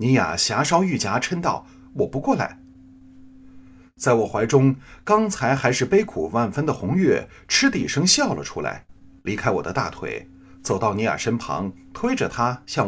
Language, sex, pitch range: Chinese, male, 90-135 Hz